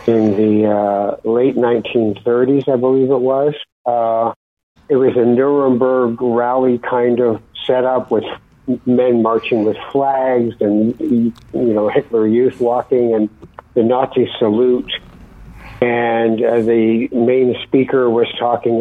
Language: English